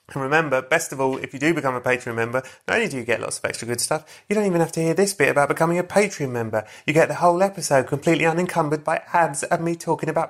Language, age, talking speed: English, 30-49, 280 wpm